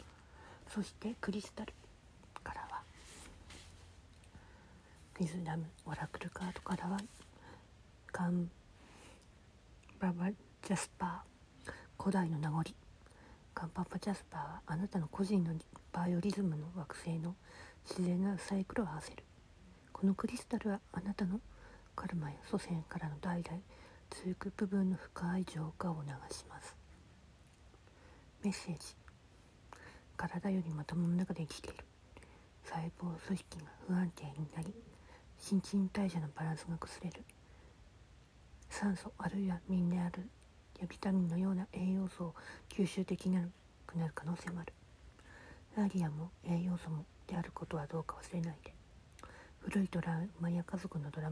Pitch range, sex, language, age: 155-190 Hz, female, Japanese, 40-59